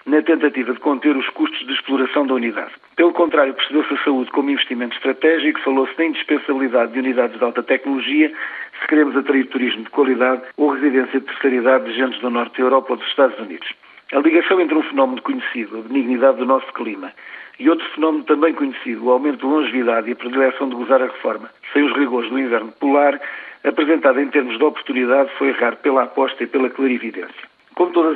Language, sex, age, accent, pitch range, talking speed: Portuguese, male, 50-69, Portuguese, 130-150 Hz, 200 wpm